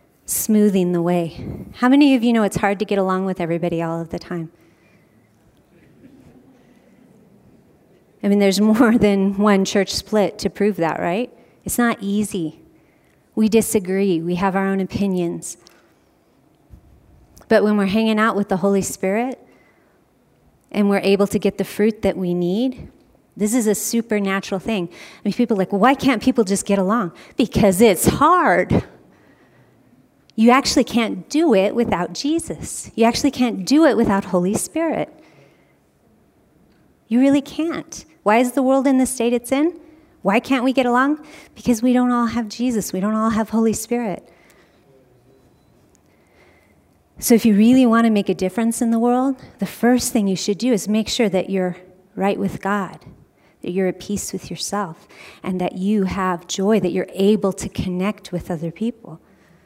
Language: English